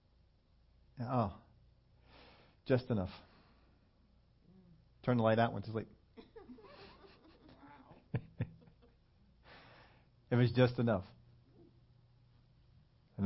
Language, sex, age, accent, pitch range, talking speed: English, male, 40-59, American, 100-140 Hz, 70 wpm